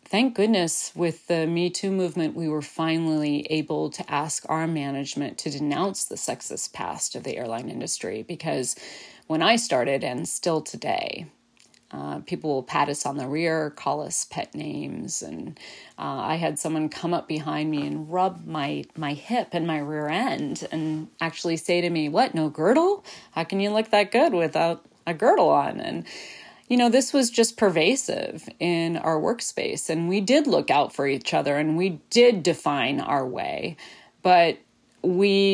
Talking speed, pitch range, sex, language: 175 wpm, 150-185 Hz, female, English